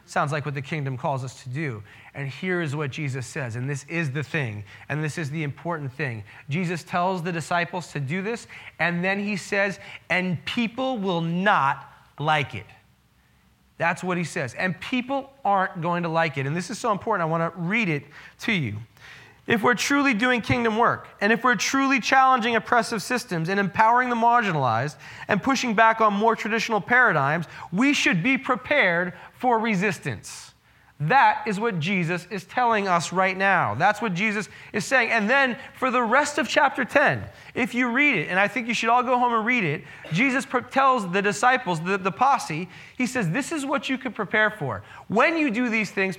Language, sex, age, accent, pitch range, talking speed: English, male, 30-49, American, 165-245 Hz, 200 wpm